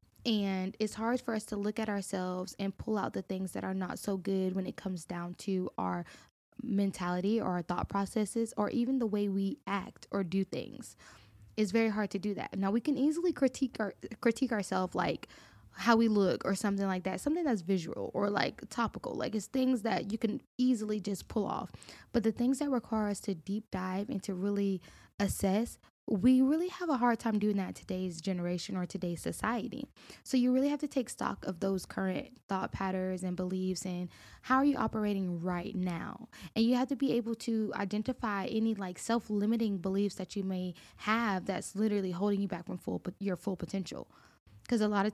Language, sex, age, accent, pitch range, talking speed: English, female, 10-29, American, 190-230 Hz, 205 wpm